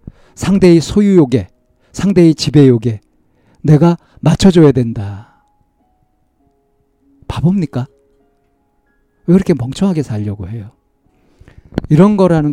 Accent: native